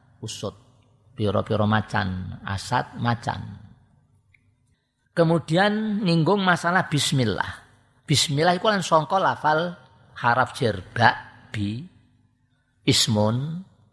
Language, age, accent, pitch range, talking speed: Indonesian, 50-69, native, 110-150 Hz, 70 wpm